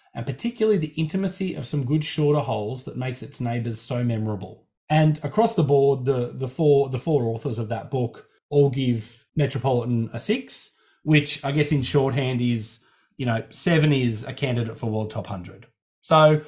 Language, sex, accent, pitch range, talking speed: English, male, Australian, 120-150 Hz, 180 wpm